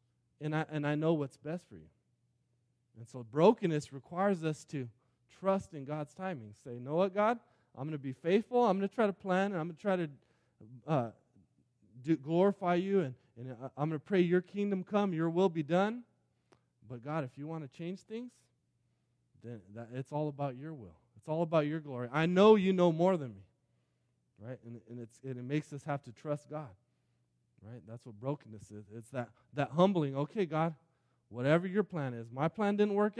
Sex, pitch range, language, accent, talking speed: male, 120-165 Hz, English, American, 210 wpm